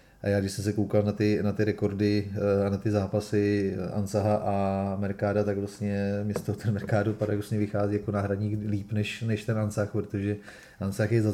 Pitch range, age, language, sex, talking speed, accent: 100-105 Hz, 30-49, Czech, male, 195 wpm, native